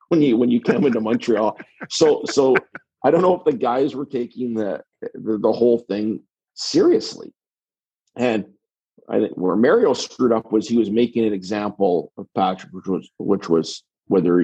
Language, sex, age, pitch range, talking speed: English, male, 50-69, 90-115 Hz, 180 wpm